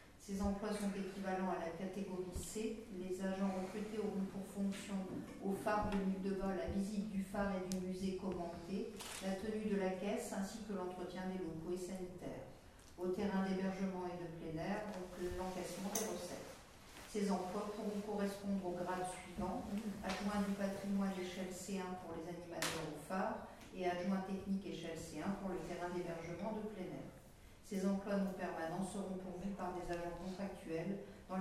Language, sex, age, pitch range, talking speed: French, female, 50-69, 175-195 Hz, 175 wpm